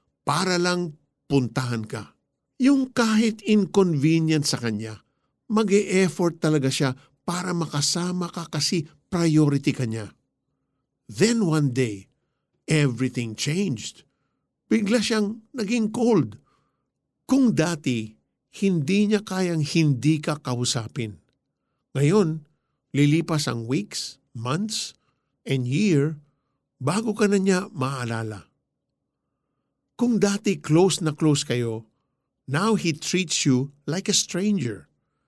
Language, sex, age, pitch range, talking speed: Filipino, male, 50-69, 130-185 Hz, 105 wpm